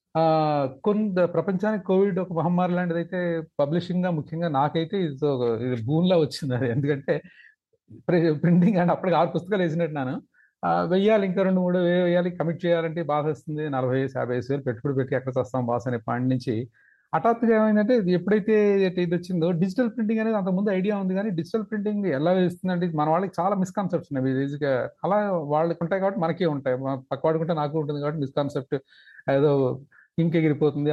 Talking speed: 150 wpm